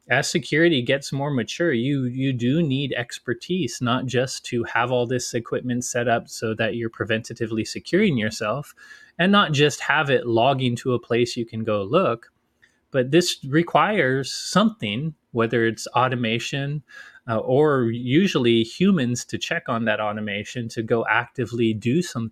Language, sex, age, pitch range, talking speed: English, male, 20-39, 115-140 Hz, 160 wpm